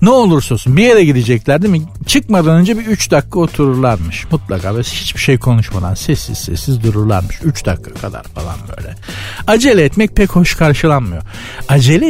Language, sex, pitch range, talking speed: Turkish, male, 115-175 Hz, 165 wpm